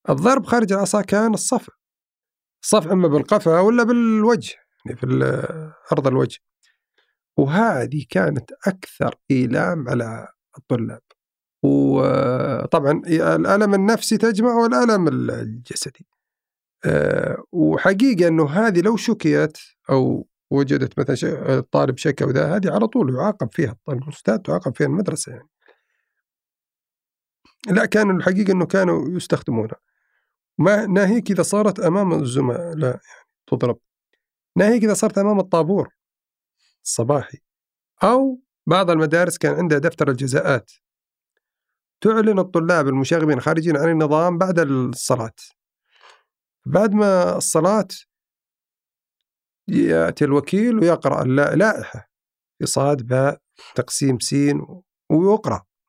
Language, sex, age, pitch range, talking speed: Arabic, male, 50-69, 140-210 Hz, 100 wpm